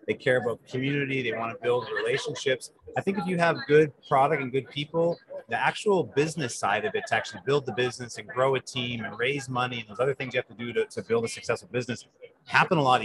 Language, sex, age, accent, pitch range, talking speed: English, male, 30-49, American, 125-170 Hz, 250 wpm